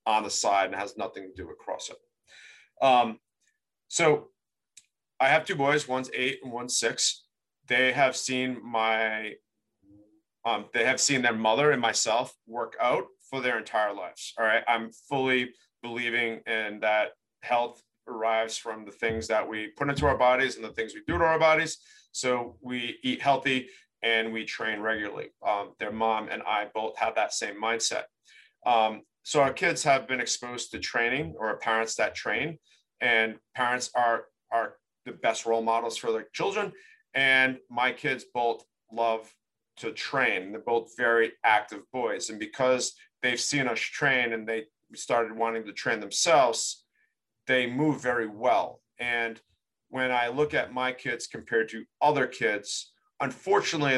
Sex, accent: male, American